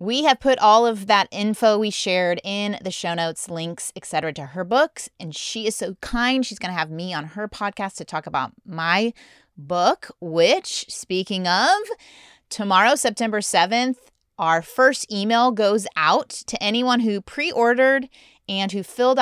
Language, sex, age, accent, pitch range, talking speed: English, female, 30-49, American, 170-235 Hz, 170 wpm